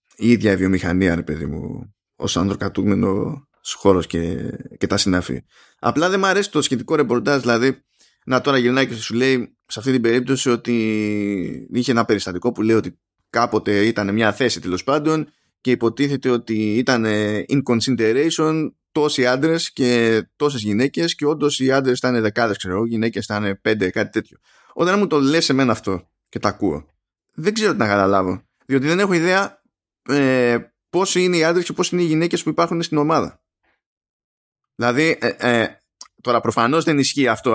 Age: 20-39